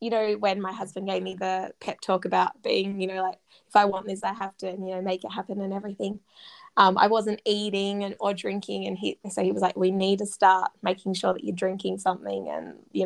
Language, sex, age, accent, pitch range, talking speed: English, female, 20-39, Australian, 185-215 Hz, 250 wpm